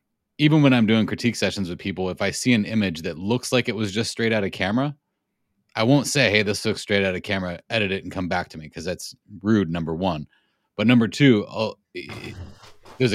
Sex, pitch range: male, 95-125 Hz